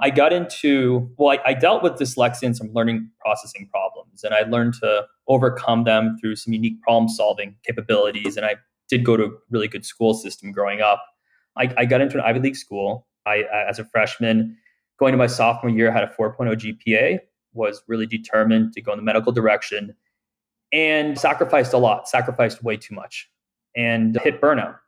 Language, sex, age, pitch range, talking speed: English, male, 20-39, 110-130 Hz, 195 wpm